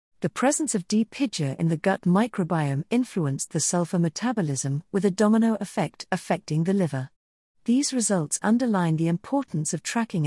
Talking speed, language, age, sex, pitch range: 160 wpm, English, 50-69, female, 150-200 Hz